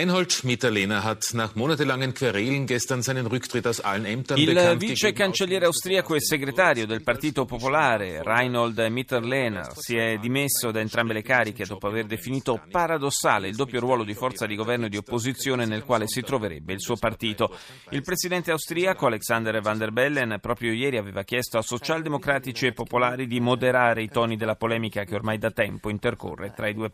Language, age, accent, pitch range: Italian, 30-49, native, 110-135 Hz